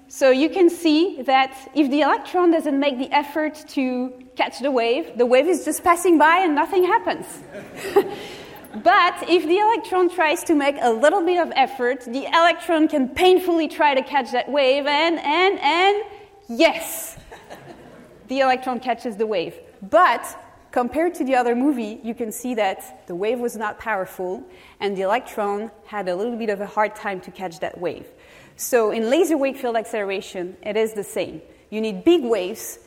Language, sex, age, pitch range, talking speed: English, female, 30-49, 215-305 Hz, 180 wpm